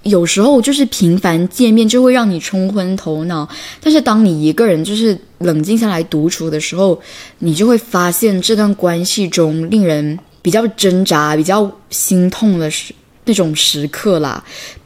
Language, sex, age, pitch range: Chinese, female, 10-29, 170-230 Hz